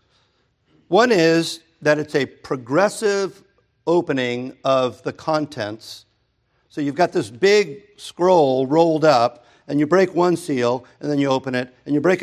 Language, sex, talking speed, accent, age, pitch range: English, male, 150 wpm, American, 50-69, 125-160 Hz